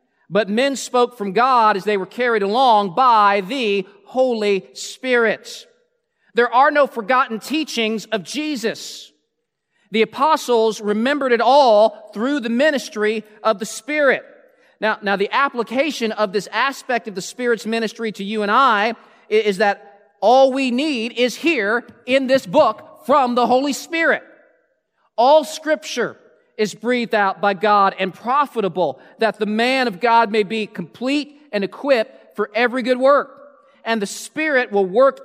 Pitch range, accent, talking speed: 205-265 Hz, American, 150 wpm